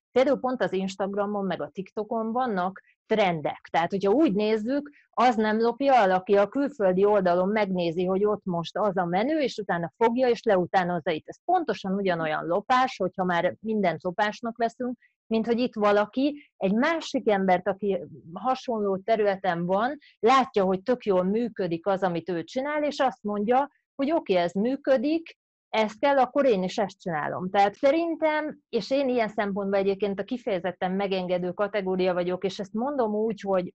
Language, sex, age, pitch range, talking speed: Hungarian, female, 30-49, 185-240 Hz, 165 wpm